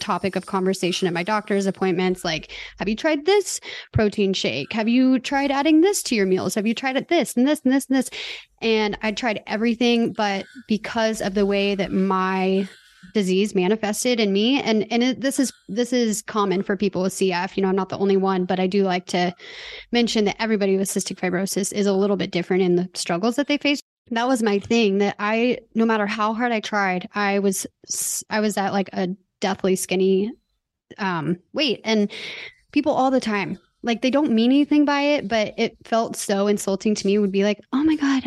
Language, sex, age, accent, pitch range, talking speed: English, female, 20-39, American, 195-240 Hz, 215 wpm